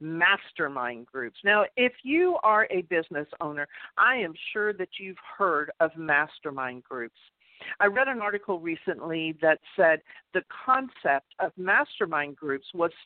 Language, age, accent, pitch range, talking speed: English, 50-69, American, 165-270 Hz, 140 wpm